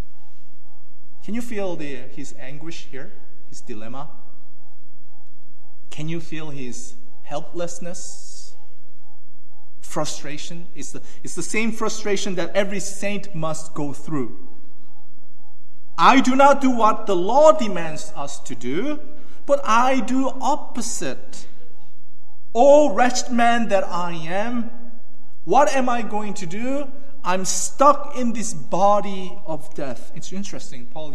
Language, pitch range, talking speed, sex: English, 145-225 Hz, 125 wpm, male